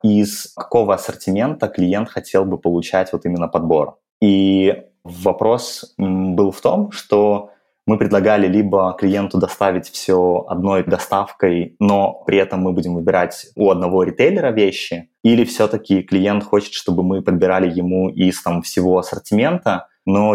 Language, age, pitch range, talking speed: Russian, 20-39, 90-100 Hz, 140 wpm